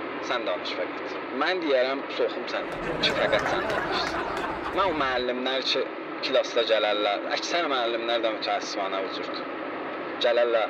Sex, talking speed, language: male, 150 wpm, Persian